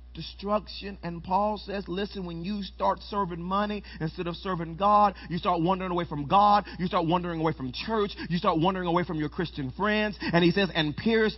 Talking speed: 205 wpm